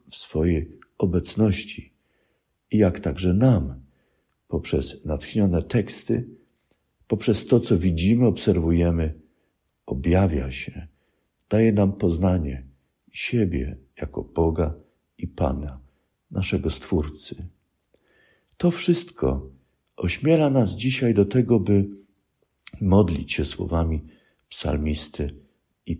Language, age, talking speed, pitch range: Polish, 50-69, 90 wpm, 80-100 Hz